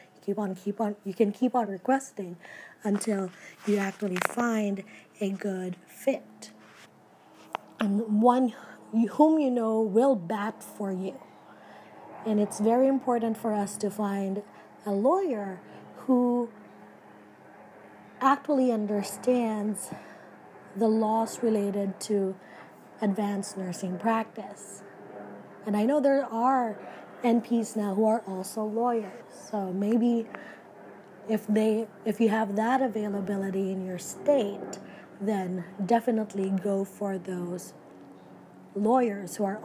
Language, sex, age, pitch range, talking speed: English, female, 20-39, 195-240 Hz, 115 wpm